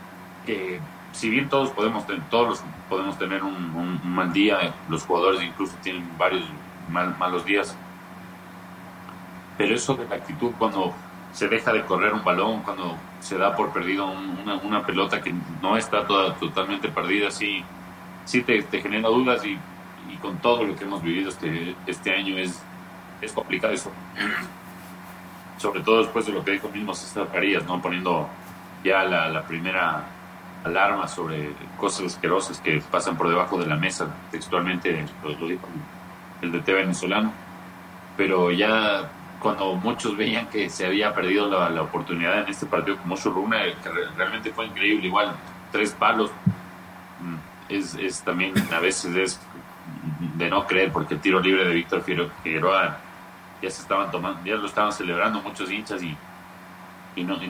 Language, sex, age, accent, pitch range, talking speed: Spanish, male, 40-59, Mexican, 90-95 Hz, 165 wpm